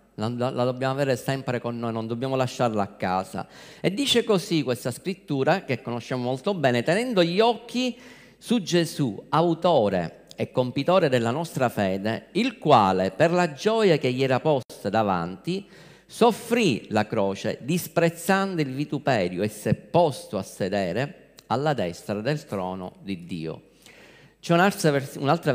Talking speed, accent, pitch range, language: 145 wpm, native, 120-170 Hz, Italian